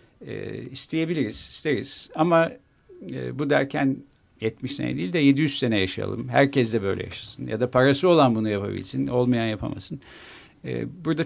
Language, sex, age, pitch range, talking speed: Turkish, male, 50-69, 110-160 Hz, 150 wpm